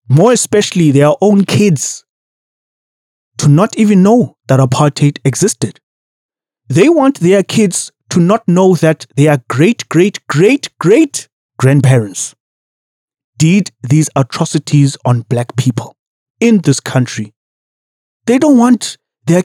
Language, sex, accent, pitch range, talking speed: English, male, South African, 130-185 Hz, 110 wpm